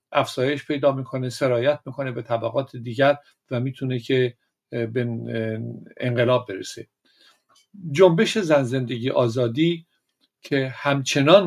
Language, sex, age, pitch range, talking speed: Persian, male, 50-69, 125-150 Hz, 100 wpm